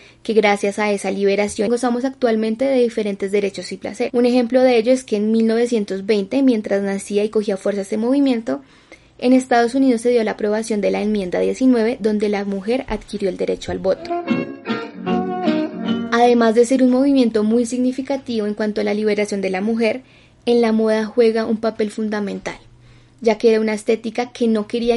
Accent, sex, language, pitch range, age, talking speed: Colombian, female, Spanish, 200-235 Hz, 10-29, 185 wpm